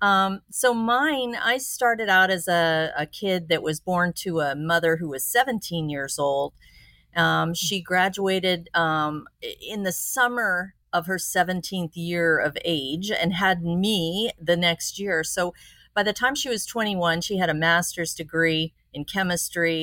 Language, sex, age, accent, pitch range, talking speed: English, female, 40-59, American, 155-190 Hz, 165 wpm